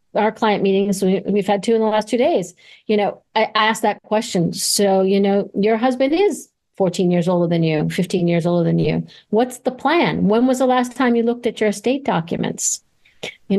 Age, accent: 50-69, American